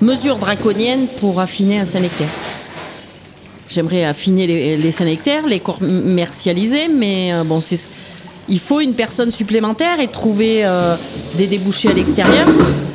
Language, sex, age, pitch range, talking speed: French, female, 30-49, 170-225 Hz, 135 wpm